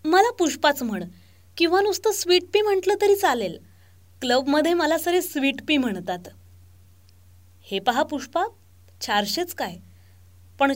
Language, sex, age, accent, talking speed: Marathi, female, 20-39, native, 125 wpm